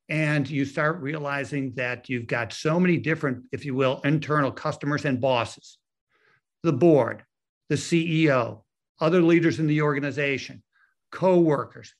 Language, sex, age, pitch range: English, male, 60-79, 135-170 Hz